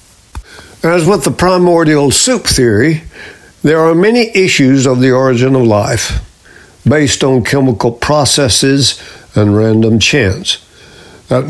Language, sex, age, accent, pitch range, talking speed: English, male, 60-79, American, 120-155 Hz, 120 wpm